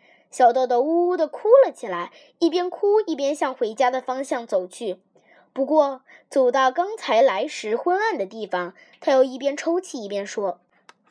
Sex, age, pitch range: female, 10-29, 240-340 Hz